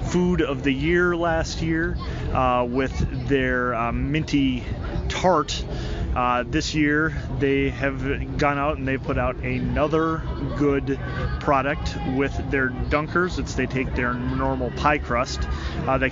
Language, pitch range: English, 125-155 Hz